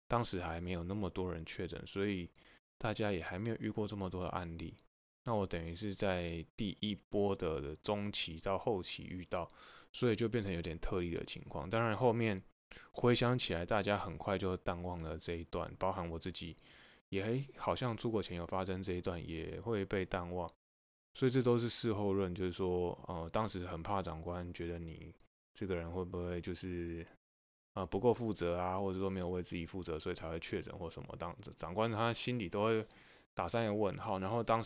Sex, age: male, 20-39